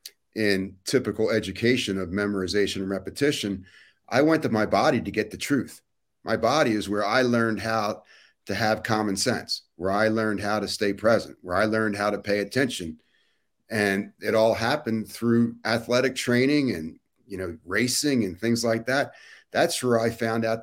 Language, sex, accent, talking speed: English, male, American, 175 wpm